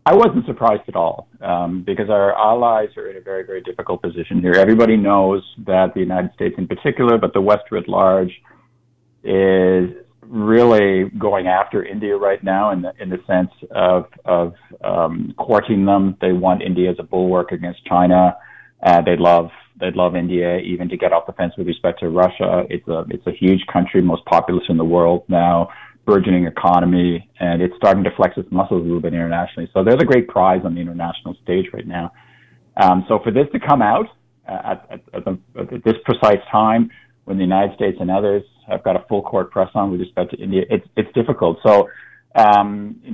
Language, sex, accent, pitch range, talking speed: English, male, American, 90-105 Hz, 200 wpm